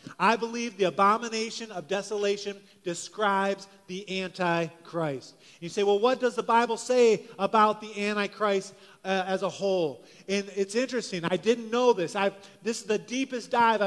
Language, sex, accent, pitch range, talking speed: English, male, American, 195-235 Hz, 155 wpm